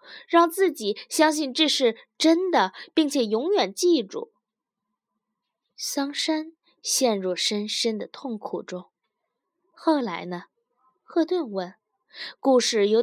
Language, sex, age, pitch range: Chinese, female, 20-39, 225-310 Hz